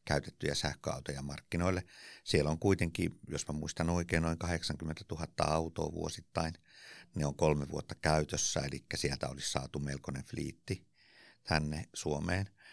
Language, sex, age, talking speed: Finnish, male, 50-69, 130 wpm